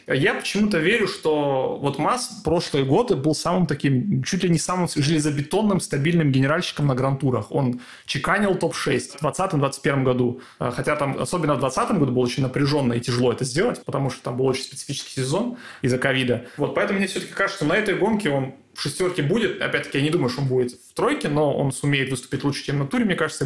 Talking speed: 205 wpm